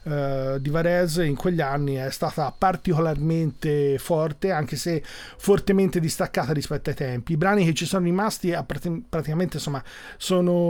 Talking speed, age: 150 wpm, 30-49